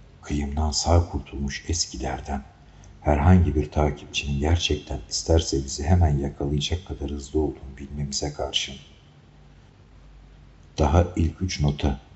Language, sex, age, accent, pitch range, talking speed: Turkish, male, 60-79, native, 70-80 Hz, 105 wpm